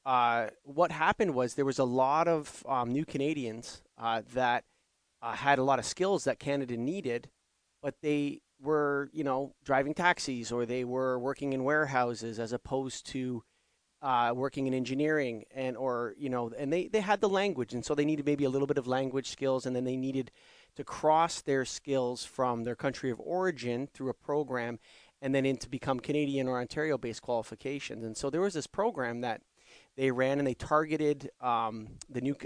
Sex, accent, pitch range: male, American, 125-150 Hz